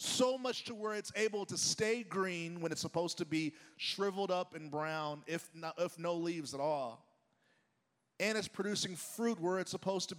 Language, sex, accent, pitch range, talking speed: English, male, American, 170-215 Hz, 195 wpm